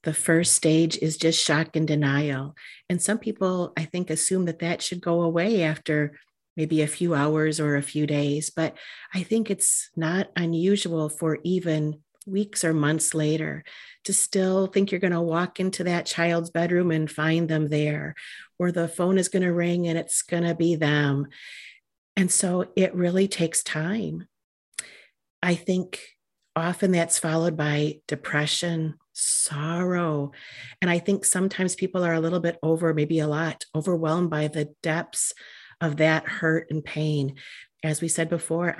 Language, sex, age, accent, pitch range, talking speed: English, female, 40-59, American, 155-180 Hz, 160 wpm